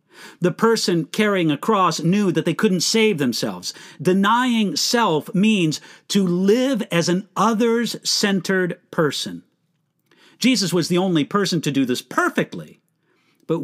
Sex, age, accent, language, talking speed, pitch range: male, 50-69, American, English, 130 wpm, 170-220 Hz